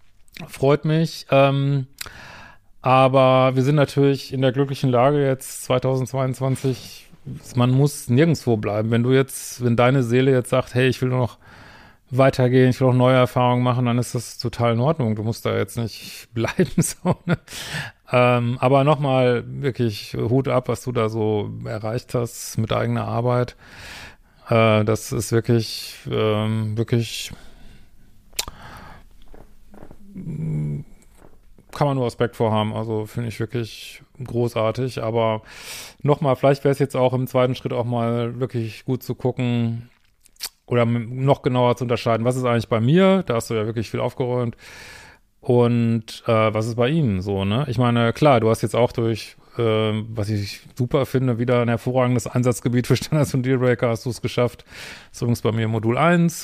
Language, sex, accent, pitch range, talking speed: German, male, German, 115-130 Hz, 160 wpm